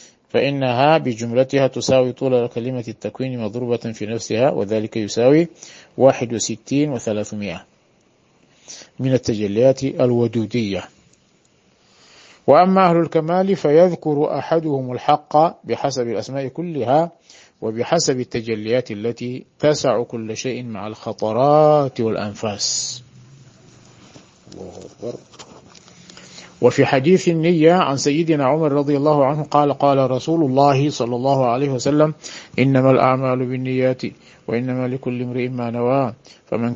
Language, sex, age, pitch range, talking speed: Arabic, male, 50-69, 115-140 Hz, 100 wpm